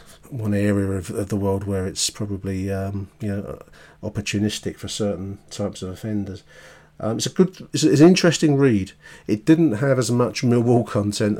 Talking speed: 170 wpm